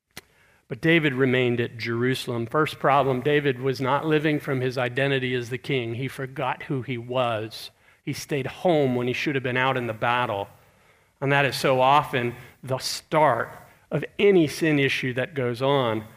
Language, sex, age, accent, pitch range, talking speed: English, male, 40-59, American, 120-150 Hz, 180 wpm